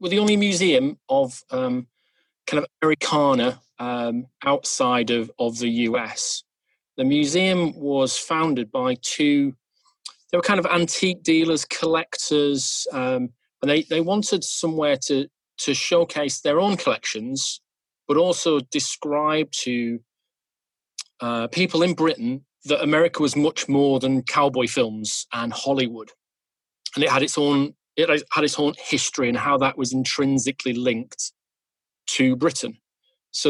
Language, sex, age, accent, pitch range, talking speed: English, male, 30-49, British, 125-155 Hz, 140 wpm